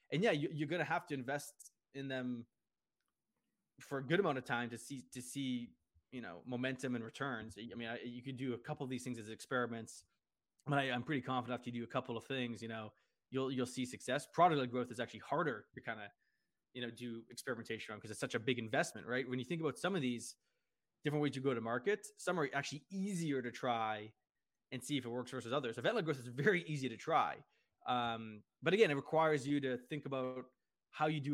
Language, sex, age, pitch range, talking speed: English, male, 20-39, 120-145 Hz, 235 wpm